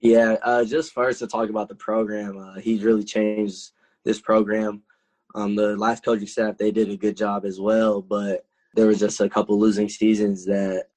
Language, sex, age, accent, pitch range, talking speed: English, male, 10-29, American, 100-110 Hz, 195 wpm